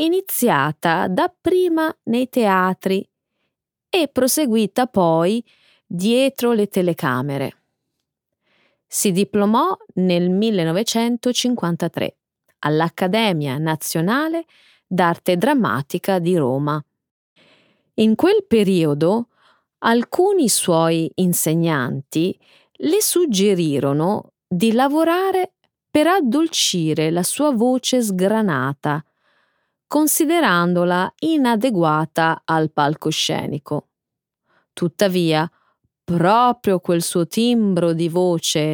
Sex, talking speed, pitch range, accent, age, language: female, 75 wpm, 165-250 Hz, native, 30-49, Italian